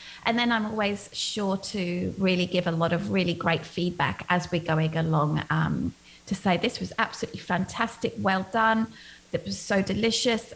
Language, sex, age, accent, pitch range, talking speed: English, female, 30-49, British, 160-215 Hz, 175 wpm